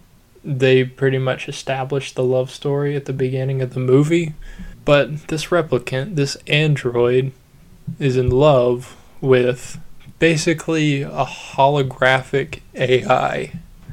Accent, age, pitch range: American, 20-39, 130-145 Hz